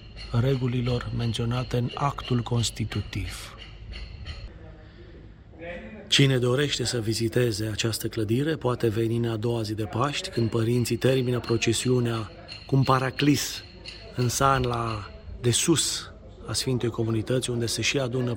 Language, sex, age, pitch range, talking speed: Romanian, male, 30-49, 105-125 Hz, 125 wpm